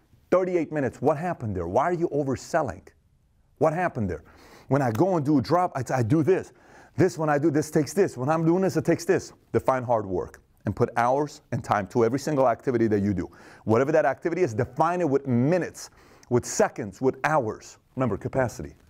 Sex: male